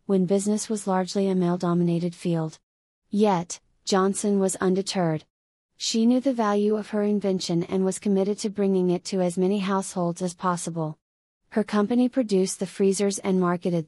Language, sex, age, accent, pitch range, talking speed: English, female, 30-49, American, 175-200 Hz, 160 wpm